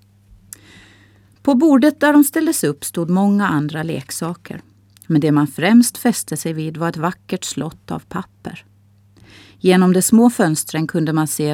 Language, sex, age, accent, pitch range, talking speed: Swedish, female, 30-49, native, 140-185 Hz, 155 wpm